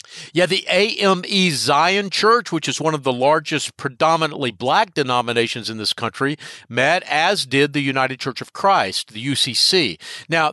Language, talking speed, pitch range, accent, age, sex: English, 160 wpm, 130-160 Hz, American, 50-69, male